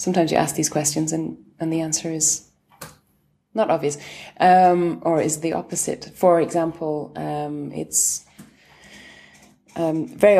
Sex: female